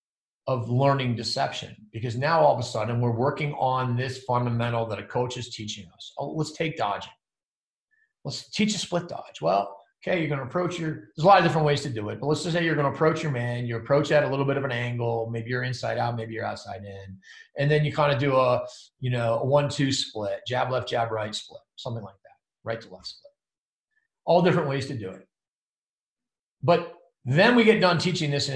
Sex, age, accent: male, 40-59, American